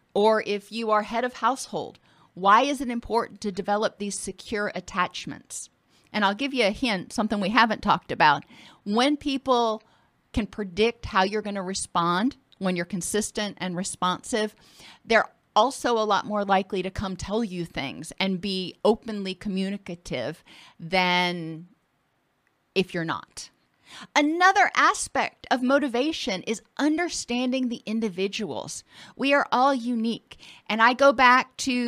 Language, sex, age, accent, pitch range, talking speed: English, female, 40-59, American, 195-255 Hz, 145 wpm